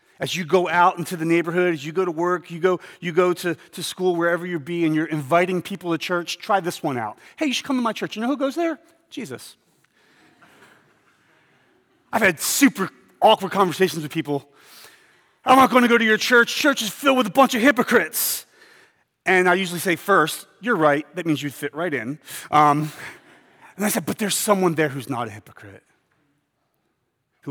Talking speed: 205 wpm